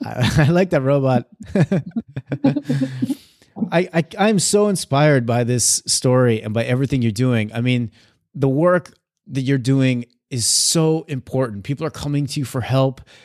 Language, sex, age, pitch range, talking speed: English, male, 30-49, 125-150 Hz, 155 wpm